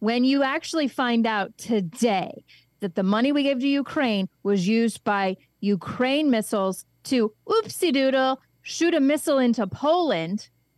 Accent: American